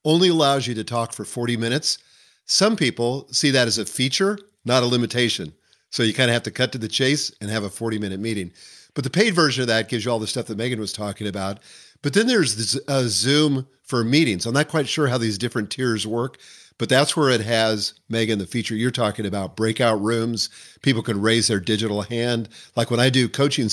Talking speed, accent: 230 wpm, American